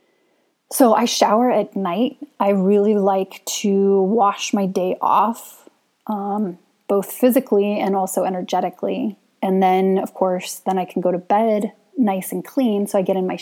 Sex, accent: female, American